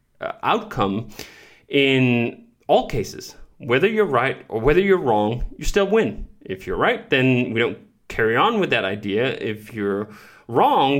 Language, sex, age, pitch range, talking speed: English, male, 30-49, 105-130 Hz, 155 wpm